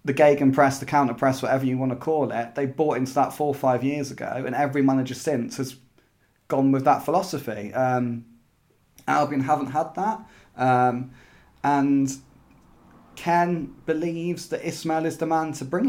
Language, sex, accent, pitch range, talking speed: English, male, British, 125-145 Hz, 175 wpm